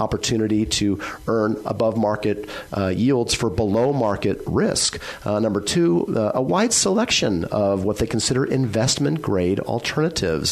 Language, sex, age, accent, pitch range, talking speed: English, male, 40-59, American, 95-120 Hz, 145 wpm